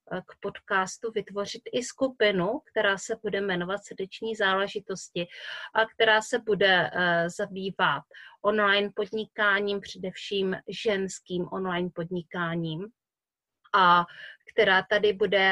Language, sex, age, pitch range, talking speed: Czech, female, 30-49, 180-210 Hz, 100 wpm